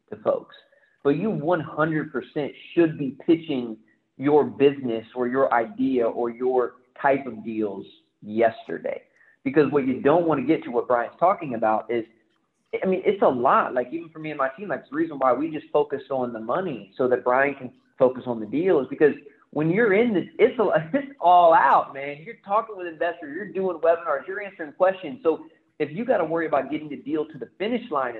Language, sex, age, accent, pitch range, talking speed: English, male, 30-49, American, 120-155 Hz, 205 wpm